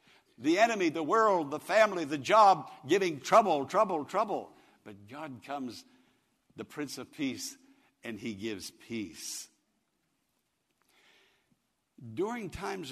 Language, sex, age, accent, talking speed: English, male, 60-79, American, 115 wpm